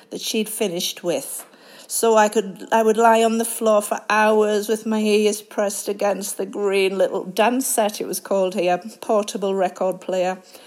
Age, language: 40-59, English